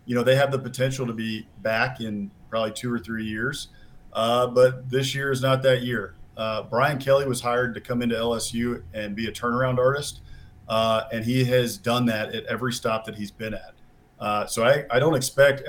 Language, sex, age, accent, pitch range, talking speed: English, male, 40-59, American, 110-125 Hz, 215 wpm